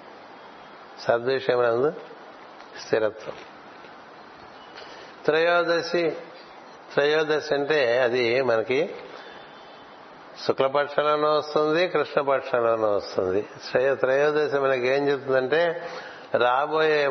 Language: Telugu